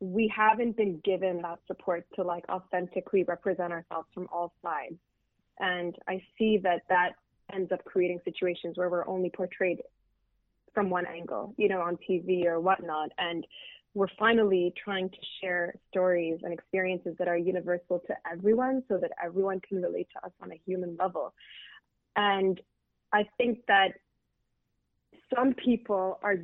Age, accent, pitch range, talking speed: 20-39, American, 180-210 Hz, 155 wpm